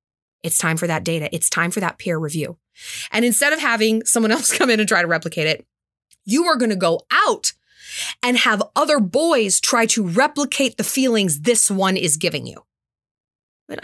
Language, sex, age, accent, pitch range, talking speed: English, female, 20-39, American, 190-295 Hz, 190 wpm